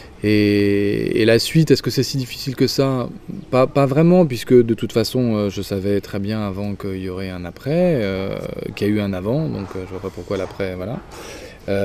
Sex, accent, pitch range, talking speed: male, French, 95-120 Hz, 225 wpm